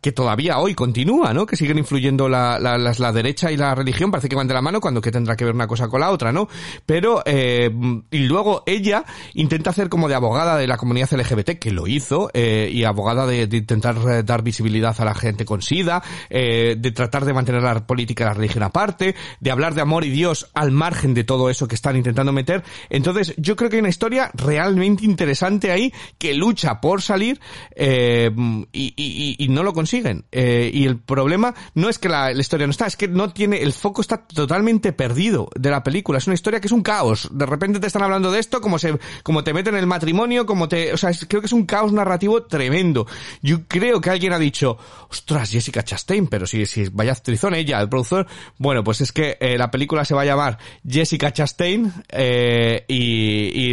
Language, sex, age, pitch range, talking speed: Spanish, male, 40-59, 125-180 Hz, 225 wpm